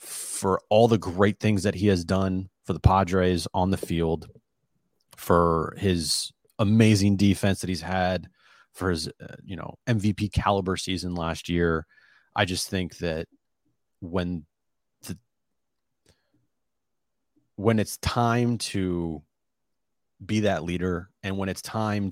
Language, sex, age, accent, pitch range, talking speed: English, male, 30-49, American, 90-110 Hz, 135 wpm